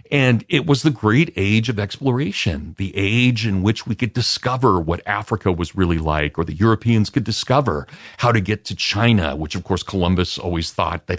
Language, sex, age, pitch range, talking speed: English, male, 40-59, 80-115 Hz, 200 wpm